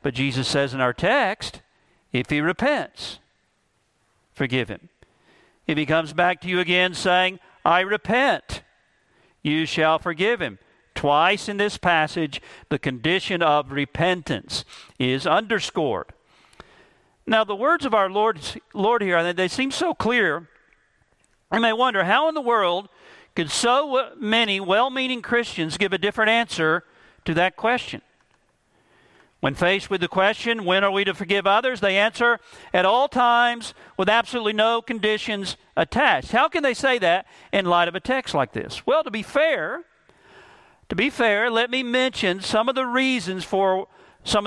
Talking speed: 155 wpm